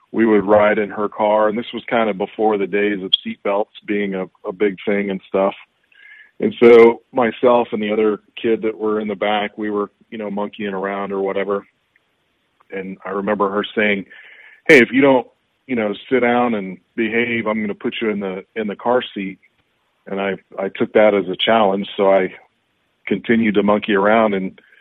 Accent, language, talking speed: American, English, 200 wpm